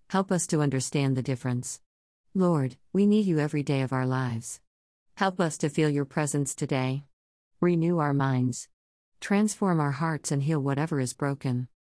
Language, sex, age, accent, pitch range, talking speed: English, female, 50-69, American, 130-165 Hz, 165 wpm